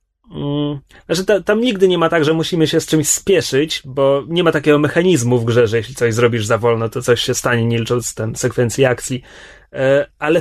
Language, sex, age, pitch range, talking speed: Polish, male, 30-49, 130-185 Hz, 200 wpm